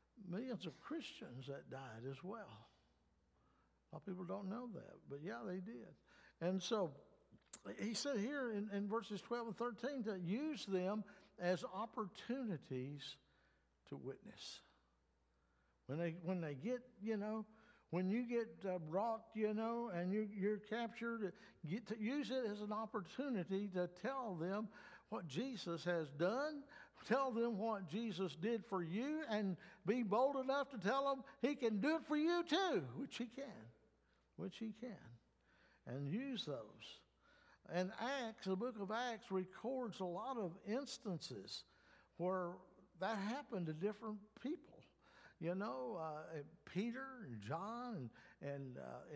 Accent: American